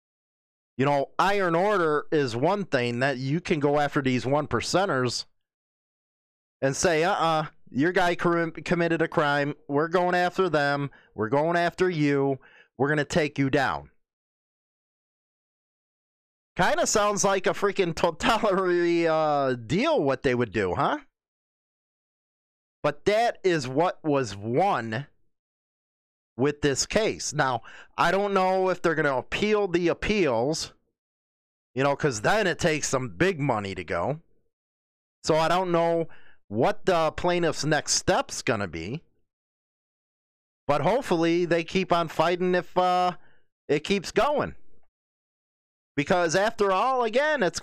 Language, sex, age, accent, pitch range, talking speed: English, male, 30-49, American, 140-185 Hz, 135 wpm